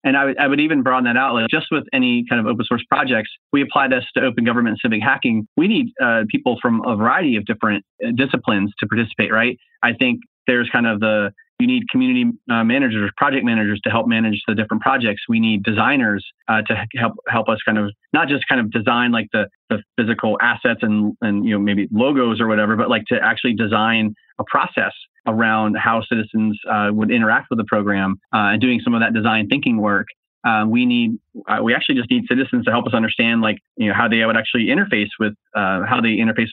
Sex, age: male, 30-49